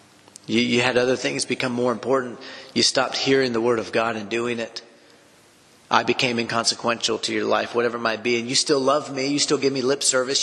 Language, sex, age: English, male, 30-49